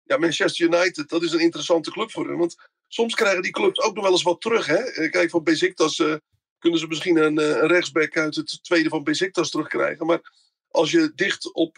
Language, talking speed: Dutch, 220 wpm